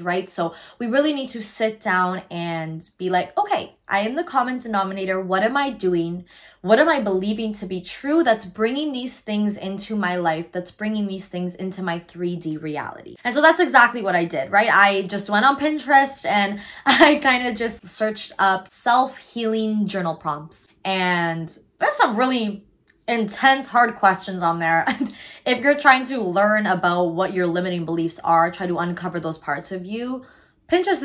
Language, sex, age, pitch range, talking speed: English, female, 20-39, 180-240 Hz, 180 wpm